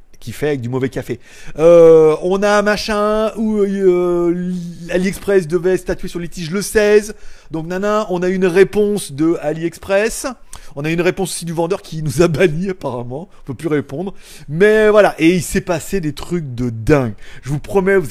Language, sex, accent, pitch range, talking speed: French, male, French, 145-200 Hz, 200 wpm